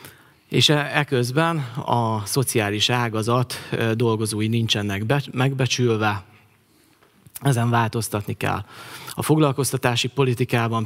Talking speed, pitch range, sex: 90 wpm, 110-135 Hz, male